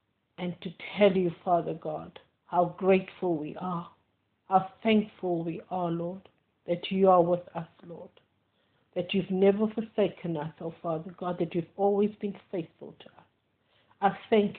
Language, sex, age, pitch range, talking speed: English, female, 50-69, 150-190 Hz, 155 wpm